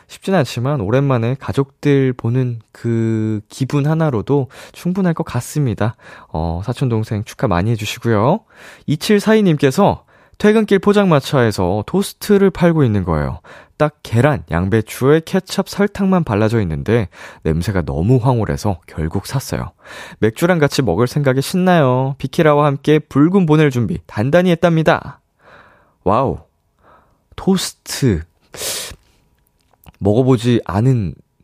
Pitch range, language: 95-150 Hz, Korean